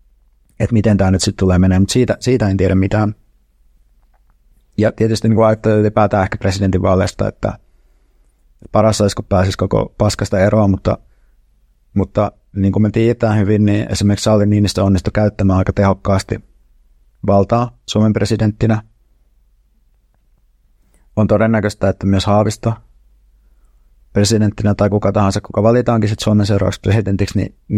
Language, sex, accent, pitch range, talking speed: Finnish, male, native, 95-110 Hz, 130 wpm